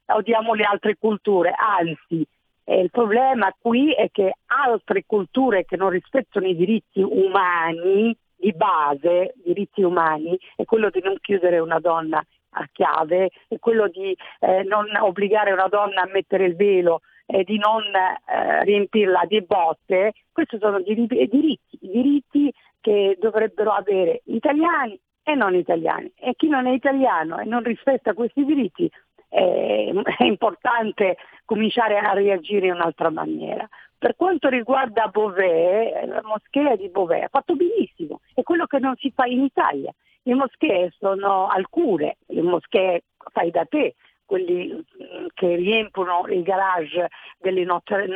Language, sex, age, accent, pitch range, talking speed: Italian, female, 50-69, native, 185-255 Hz, 150 wpm